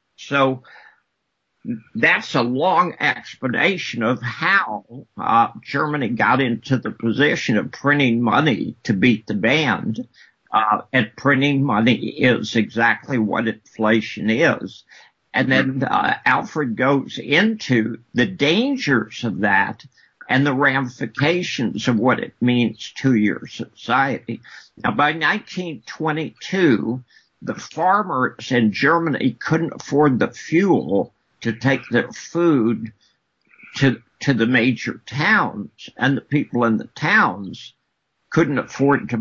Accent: American